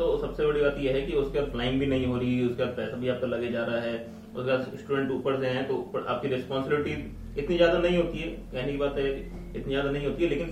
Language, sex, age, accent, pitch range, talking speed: Hindi, male, 30-49, native, 115-140 Hz, 205 wpm